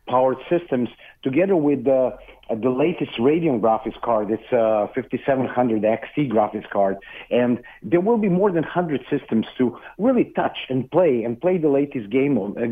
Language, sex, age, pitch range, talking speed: English, male, 50-69, 115-155 Hz, 175 wpm